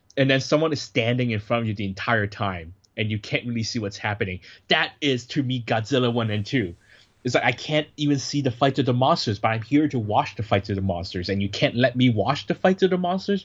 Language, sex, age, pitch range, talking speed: English, male, 20-39, 100-125 Hz, 265 wpm